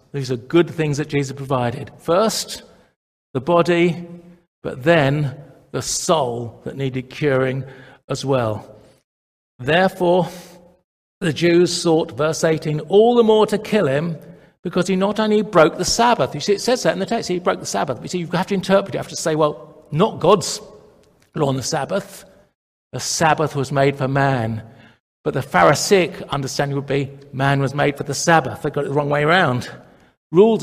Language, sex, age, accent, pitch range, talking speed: English, male, 50-69, British, 135-175 Hz, 185 wpm